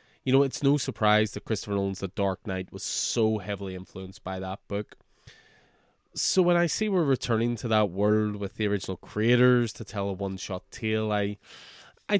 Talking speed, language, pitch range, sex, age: 185 wpm, English, 95-120 Hz, male, 20-39